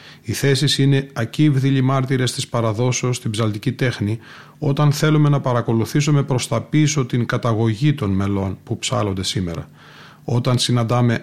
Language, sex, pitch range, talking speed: Greek, male, 115-135 Hz, 140 wpm